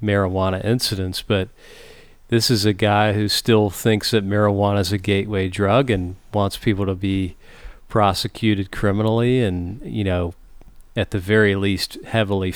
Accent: American